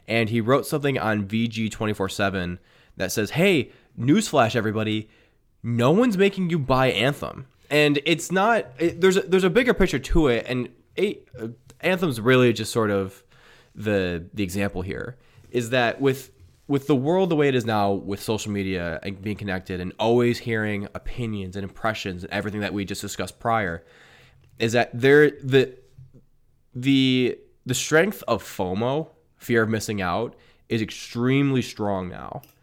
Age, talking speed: 20-39, 160 wpm